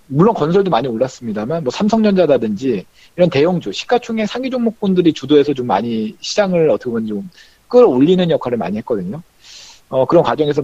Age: 40-59